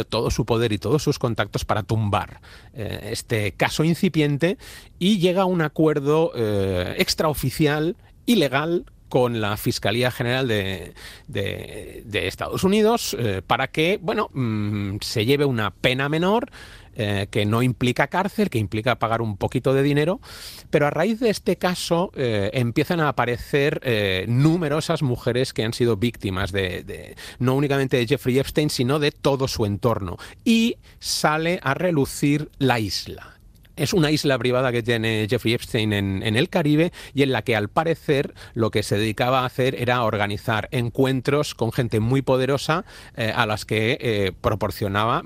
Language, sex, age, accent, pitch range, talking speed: Spanish, male, 30-49, Spanish, 110-150 Hz, 165 wpm